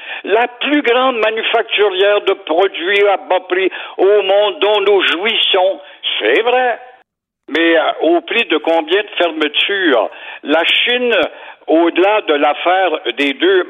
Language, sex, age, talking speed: French, male, 60-79, 135 wpm